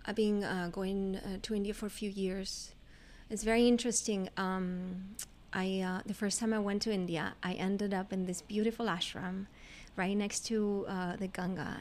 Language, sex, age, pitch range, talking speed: English, female, 30-49, 185-210 Hz, 190 wpm